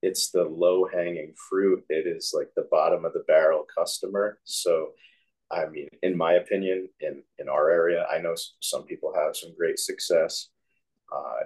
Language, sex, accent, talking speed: English, male, American, 175 wpm